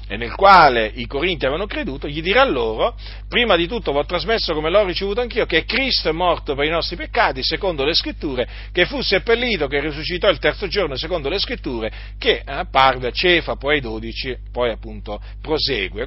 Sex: male